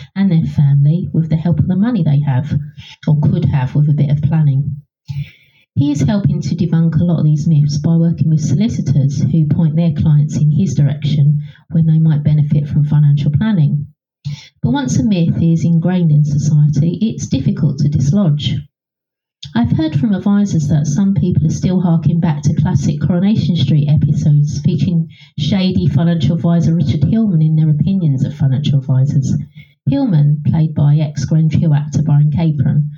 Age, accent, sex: 30-49, British, female